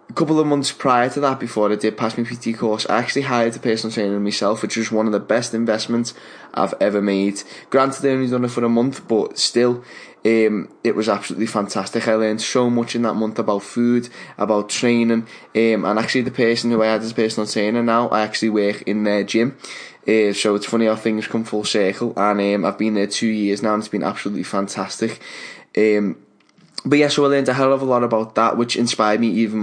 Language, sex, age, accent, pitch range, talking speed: English, male, 10-29, British, 105-115 Hz, 235 wpm